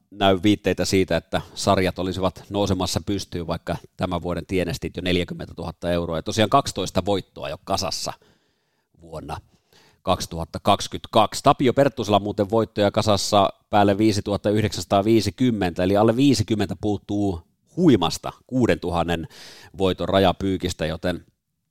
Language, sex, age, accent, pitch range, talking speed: Finnish, male, 30-49, native, 90-120 Hz, 115 wpm